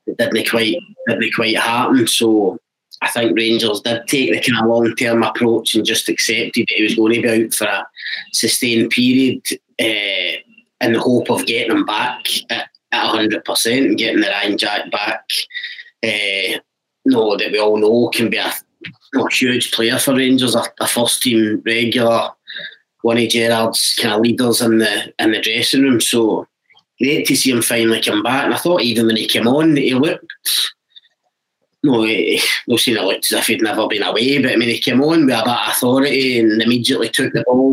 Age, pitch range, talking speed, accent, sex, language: 30-49, 115-130 Hz, 200 wpm, British, male, English